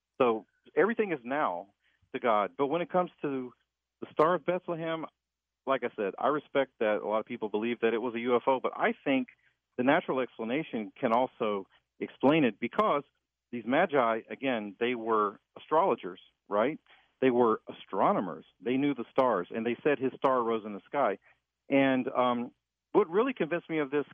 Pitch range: 115-145 Hz